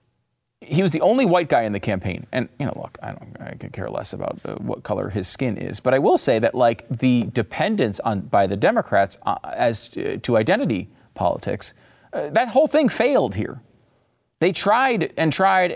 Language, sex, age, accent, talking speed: English, male, 30-49, American, 205 wpm